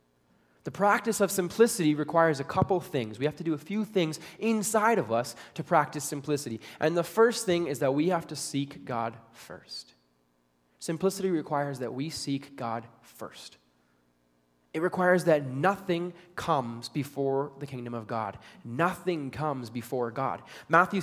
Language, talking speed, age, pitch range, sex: English, 155 wpm, 20-39, 125-195 Hz, male